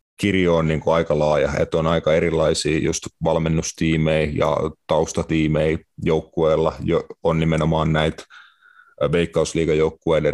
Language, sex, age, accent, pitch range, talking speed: Finnish, male, 30-49, native, 80-85 Hz, 100 wpm